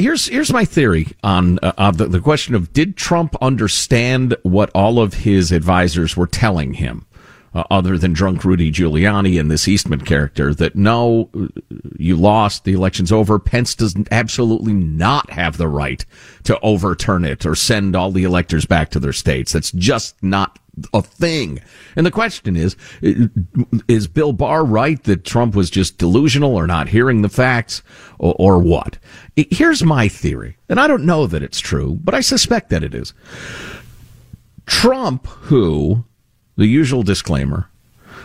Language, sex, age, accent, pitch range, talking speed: English, male, 50-69, American, 90-135 Hz, 165 wpm